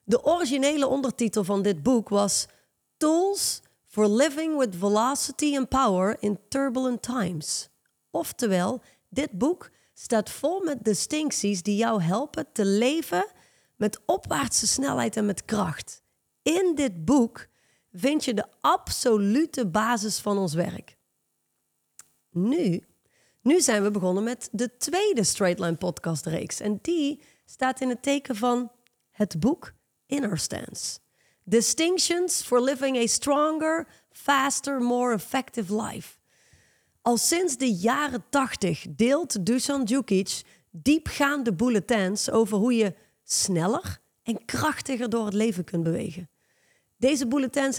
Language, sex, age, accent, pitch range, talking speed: Dutch, female, 30-49, Dutch, 205-275 Hz, 125 wpm